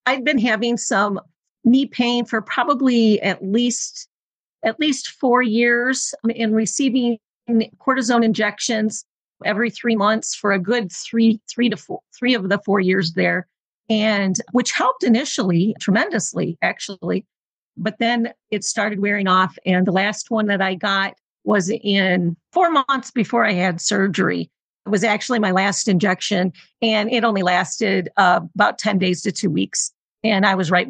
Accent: American